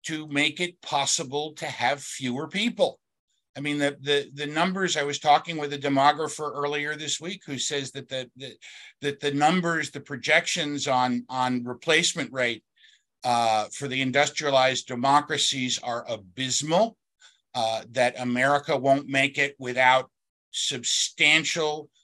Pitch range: 130-155 Hz